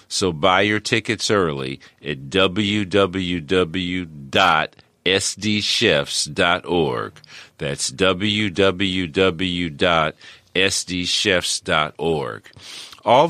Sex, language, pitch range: male, English, 90-110 Hz